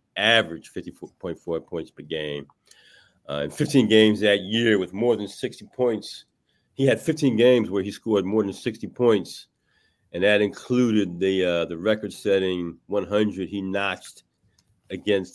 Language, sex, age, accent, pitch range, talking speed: English, male, 40-59, American, 80-105 Hz, 160 wpm